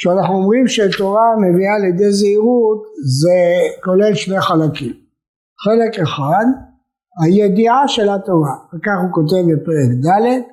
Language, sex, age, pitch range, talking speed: Hebrew, male, 50-69, 165-220 Hz, 115 wpm